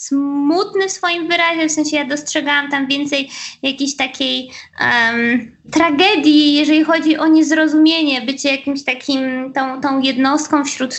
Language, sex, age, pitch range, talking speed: Polish, female, 20-39, 250-290 Hz, 130 wpm